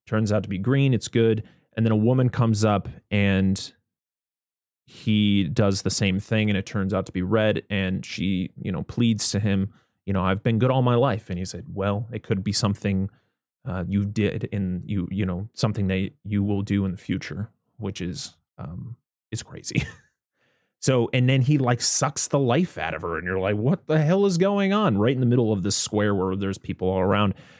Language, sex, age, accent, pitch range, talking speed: English, male, 30-49, American, 95-115 Hz, 220 wpm